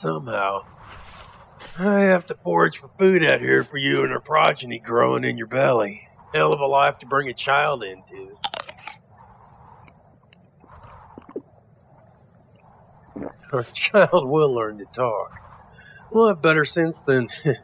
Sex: male